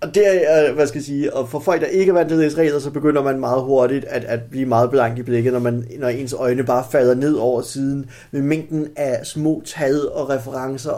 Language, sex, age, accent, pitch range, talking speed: Danish, male, 30-49, native, 125-160 Hz, 225 wpm